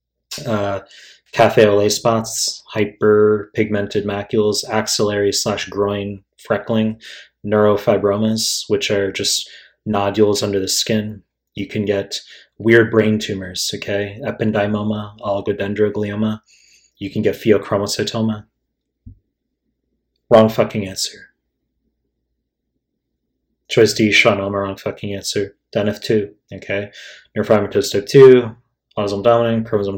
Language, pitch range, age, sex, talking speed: English, 100-115 Hz, 20-39, male, 95 wpm